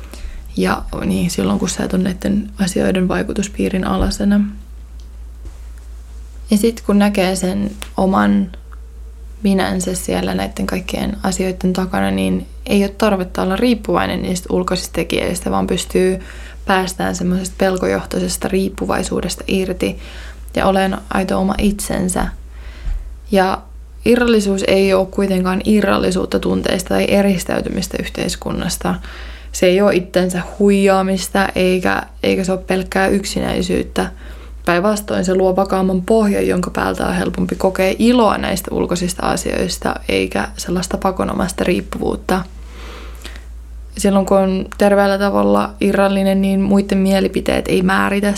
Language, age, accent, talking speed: Finnish, 20-39, native, 115 wpm